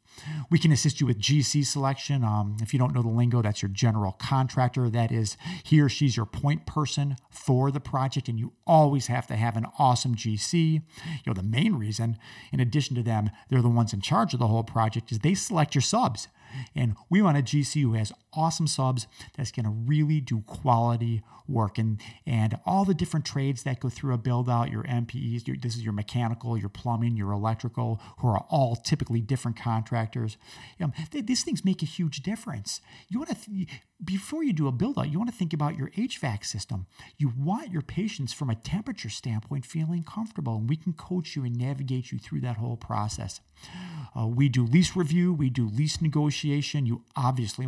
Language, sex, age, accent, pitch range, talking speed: English, male, 40-59, American, 115-155 Hz, 205 wpm